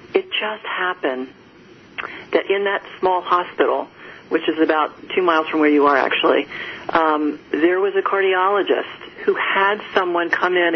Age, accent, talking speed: 40-59, American, 155 wpm